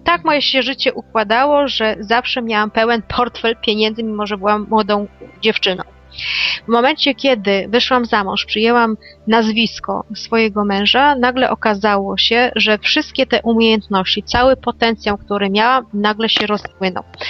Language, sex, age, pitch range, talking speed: Polish, female, 30-49, 210-245 Hz, 135 wpm